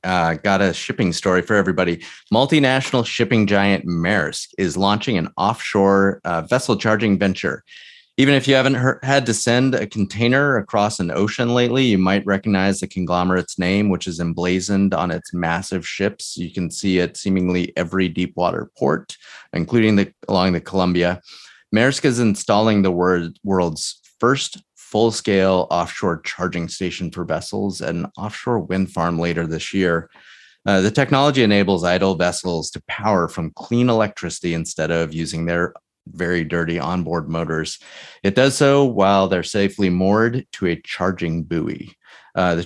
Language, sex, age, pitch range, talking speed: English, male, 30-49, 90-115 Hz, 155 wpm